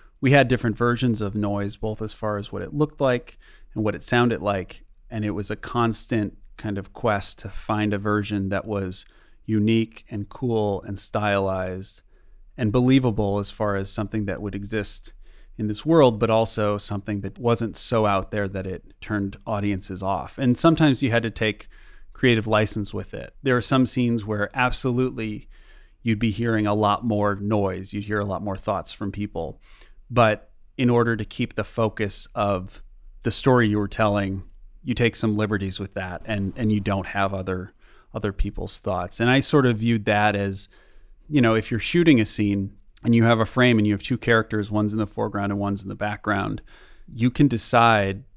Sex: male